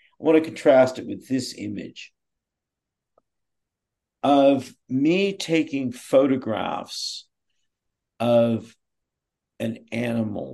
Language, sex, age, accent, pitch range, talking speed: English, male, 50-69, American, 105-130 Hz, 80 wpm